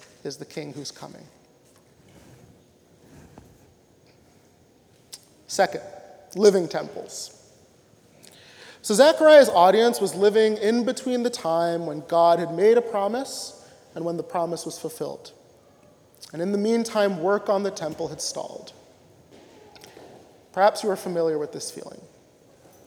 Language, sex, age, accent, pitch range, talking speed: English, male, 30-49, American, 170-230 Hz, 120 wpm